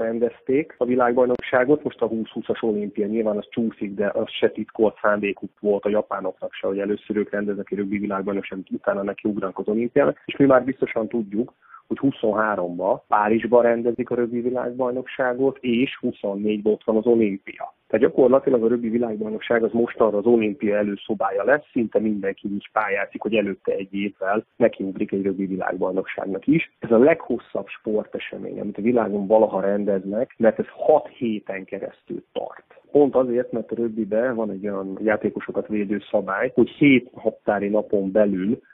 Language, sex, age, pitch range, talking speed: Hungarian, male, 30-49, 105-120 Hz, 165 wpm